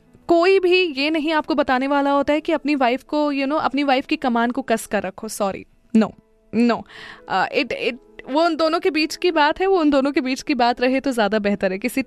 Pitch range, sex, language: 215-265 Hz, female, Hindi